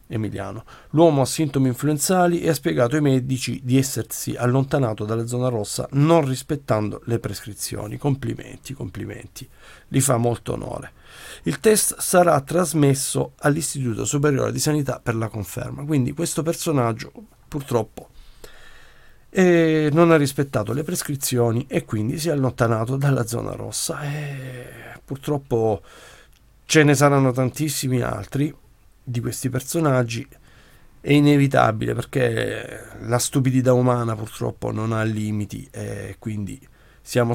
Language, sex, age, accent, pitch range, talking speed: Italian, male, 50-69, native, 115-145 Hz, 125 wpm